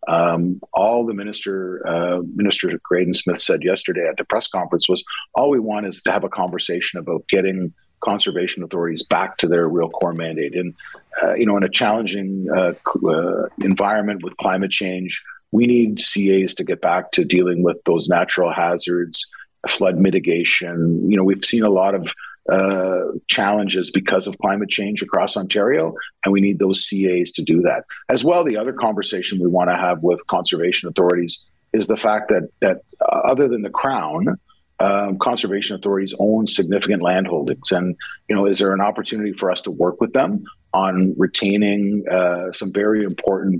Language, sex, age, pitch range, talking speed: English, male, 50-69, 90-100 Hz, 180 wpm